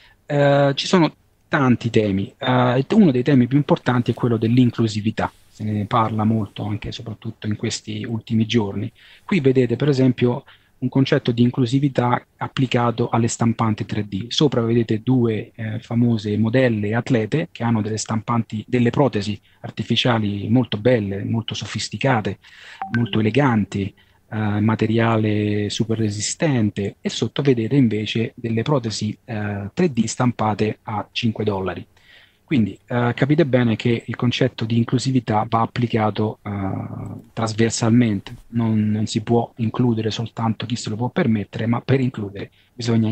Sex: male